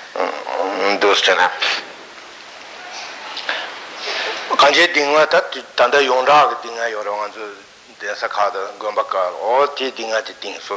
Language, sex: Italian, male